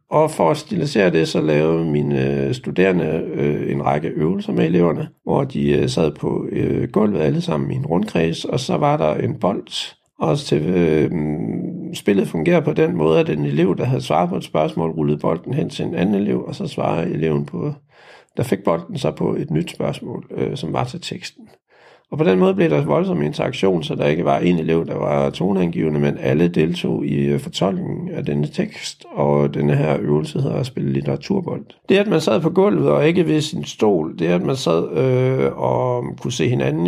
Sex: male